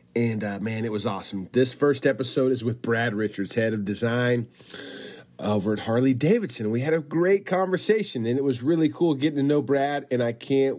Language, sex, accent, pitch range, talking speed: English, male, American, 110-140 Hz, 200 wpm